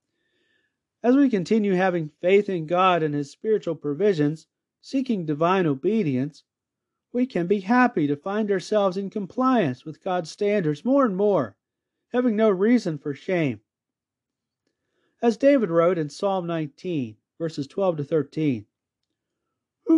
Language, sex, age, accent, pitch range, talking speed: English, male, 40-59, American, 145-215 Hz, 130 wpm